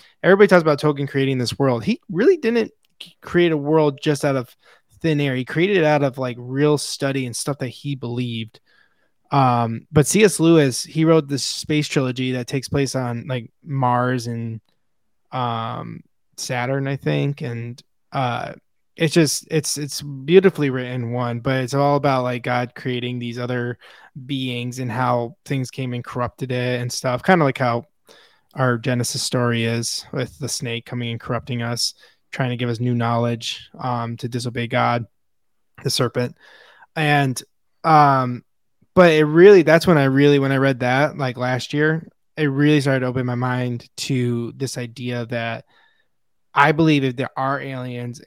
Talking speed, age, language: 175 wpm, 20-39, English